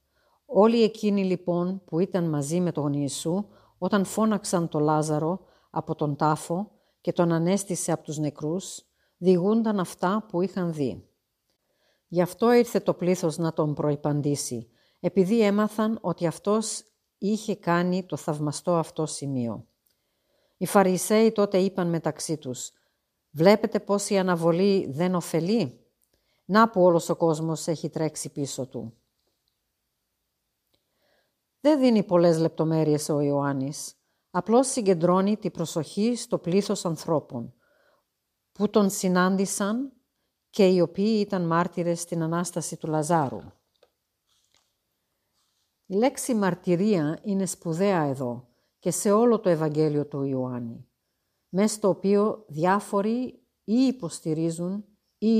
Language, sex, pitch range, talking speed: Greek, female, 155-200 Hz, 120 wpm